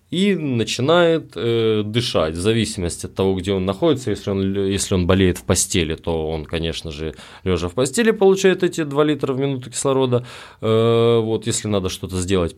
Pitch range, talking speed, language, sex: 95-130 Hz, 175 wpm, Russian, male